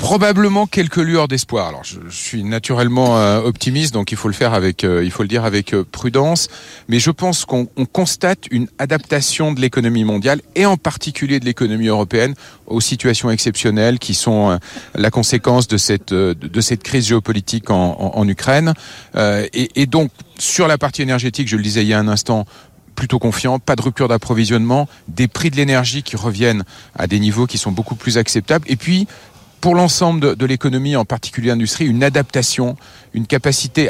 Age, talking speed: 40-59, 195 wpm